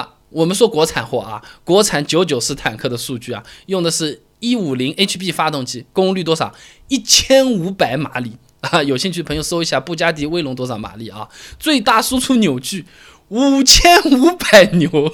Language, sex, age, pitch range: Chinese, male, 20-39, 135-205 Hz